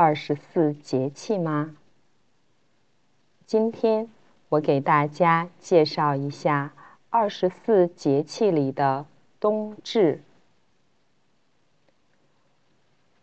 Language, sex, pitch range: Chinese, female, 140-195 Hz